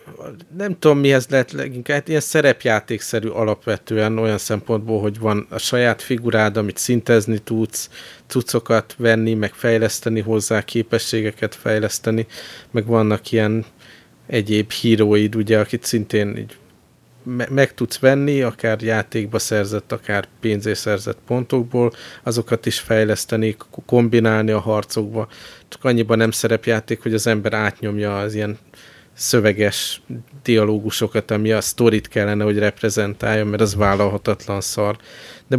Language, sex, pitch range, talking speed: Hungarian, male, 105-115 Hz, 120 wpm